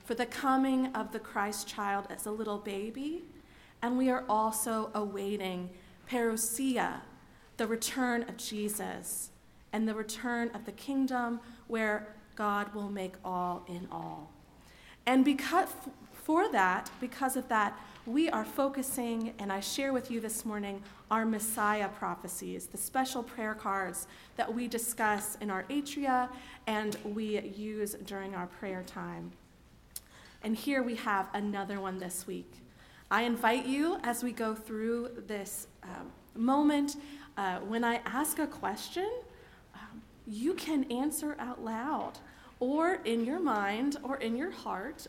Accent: American